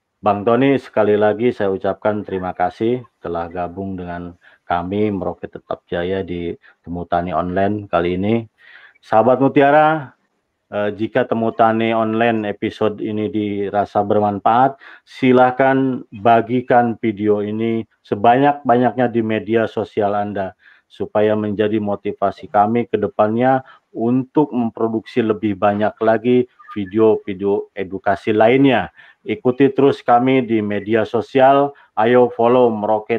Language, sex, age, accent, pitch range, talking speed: Indonesian, male, 40-59, native, 105-125 Hz, 110 wpm